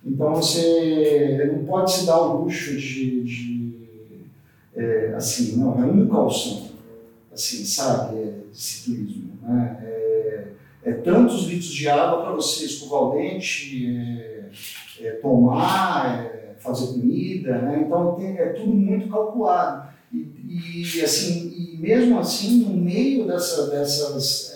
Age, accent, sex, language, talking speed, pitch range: 50-69, Brazilian, male, Portuguese, 140 wpm, 140-205 Hz